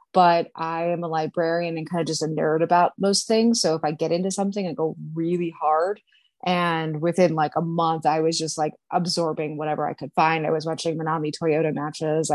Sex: female